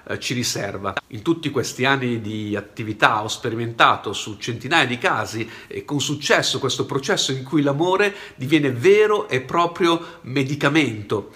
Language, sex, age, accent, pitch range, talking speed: Italian, male, 50-69, native, 120-155 Hz, 145 wpm